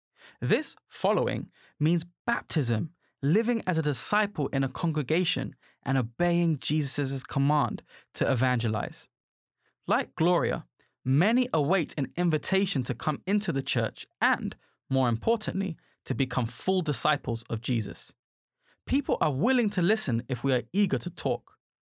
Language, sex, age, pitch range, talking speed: English, male, 20-39, 130-200 Hz, 130 wpm